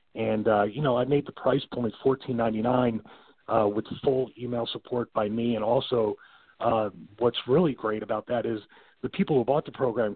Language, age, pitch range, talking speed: English, 40-59, 105-130 Hz, 190 wpm